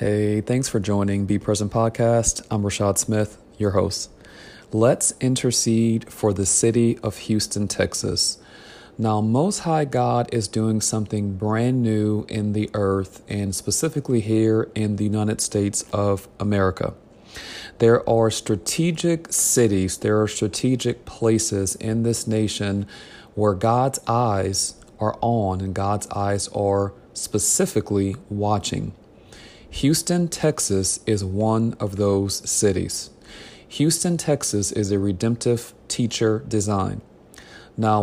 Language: English